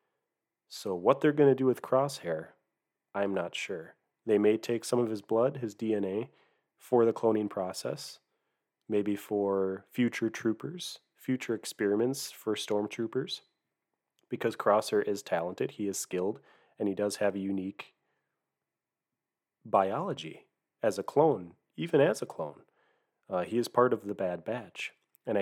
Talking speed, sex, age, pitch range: 145 wpm, male, 30-49, 100-120 Hz